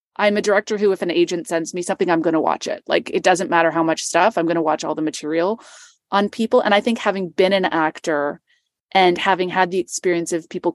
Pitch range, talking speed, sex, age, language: 165-200 Hz, 250 wpm, female, 30-49, English